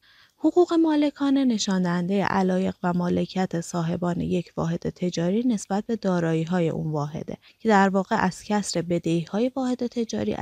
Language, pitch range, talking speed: Persian, 175-220 Hz, 145 wpm